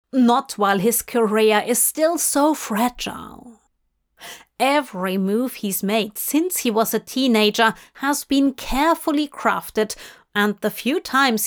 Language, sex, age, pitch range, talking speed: English, female, 30-49, 210-275 Hz, 130 wpm